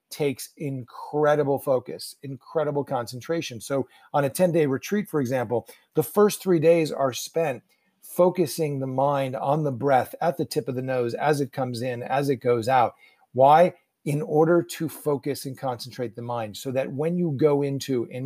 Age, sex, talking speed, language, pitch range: 40-59, male, 180 wpm, English, 130-170 Hz